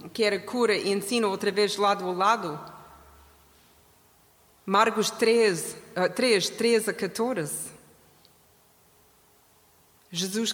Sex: female